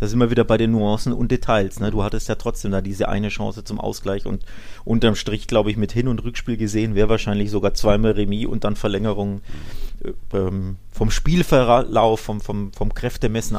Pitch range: 100-115 Hz